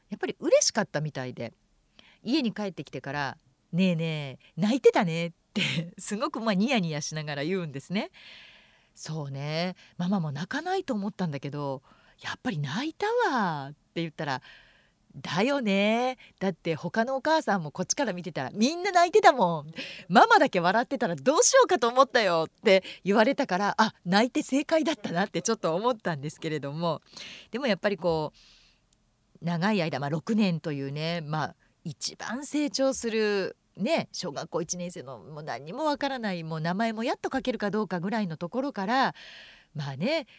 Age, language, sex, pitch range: 40-59, Japanese, female, 165-230 Hz